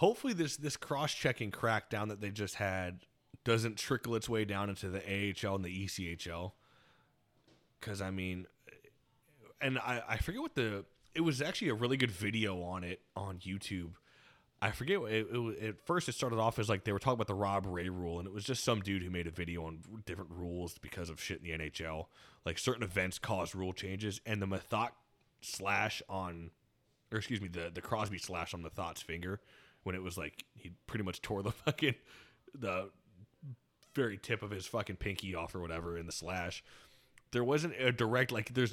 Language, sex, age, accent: English, male, 20-39, American